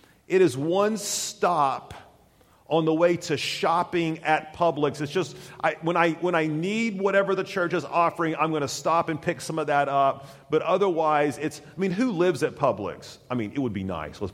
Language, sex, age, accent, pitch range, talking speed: English, male, 40-59, American, 130-175 Hz, 210 wpm